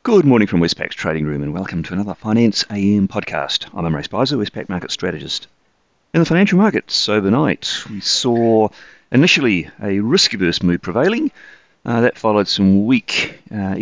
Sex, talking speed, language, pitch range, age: male, 160 wpm, English, 85-105 Hz, 30-49